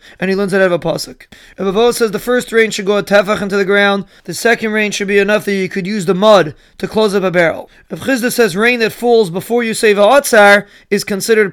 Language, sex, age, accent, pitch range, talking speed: English, male, 30-49, American, 195-225 Hz, 255 wpm